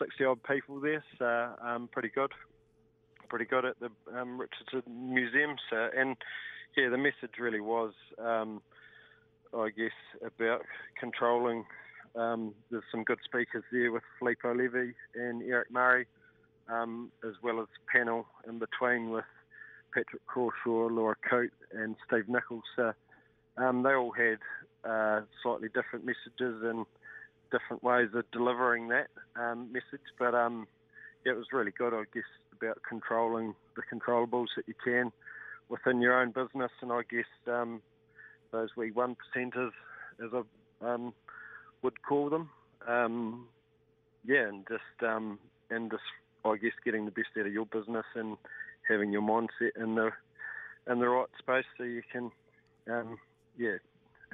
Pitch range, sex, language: 110-125 Hz, male, English